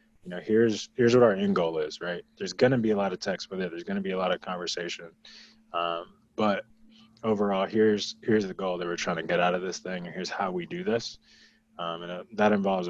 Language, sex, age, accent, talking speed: English, male, 20-39, American, 255 wpm